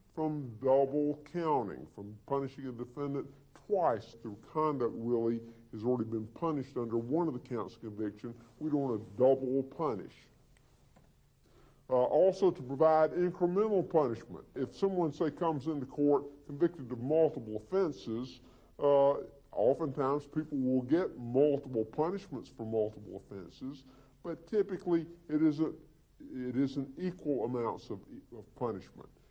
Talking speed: 130 wpm